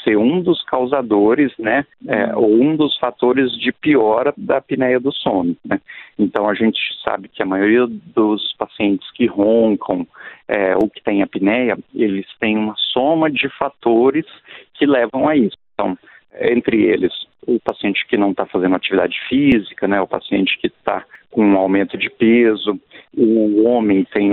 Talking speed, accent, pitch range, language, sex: 165 wpm, Brazilian, 105-150 Hz, Portuguese, male